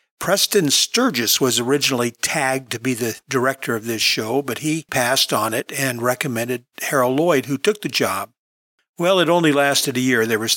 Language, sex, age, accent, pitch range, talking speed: English, male, 50-69, American, 125-165 Hz, 185 wpm